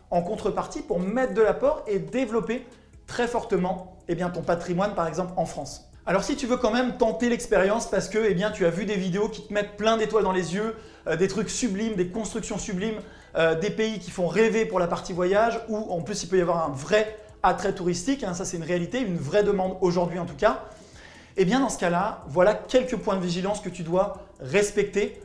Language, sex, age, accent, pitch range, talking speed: French, male, 30-49, French, 185-225 Hz, 220 wpm